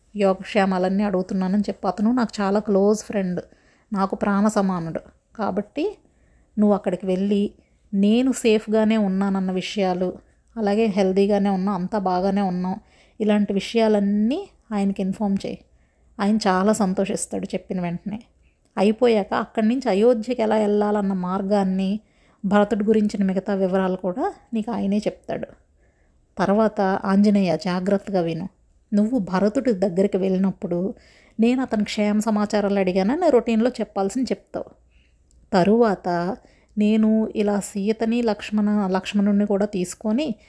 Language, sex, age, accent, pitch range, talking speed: Telugu, female, 30-49, native, 195-220 Hz, 110 wpm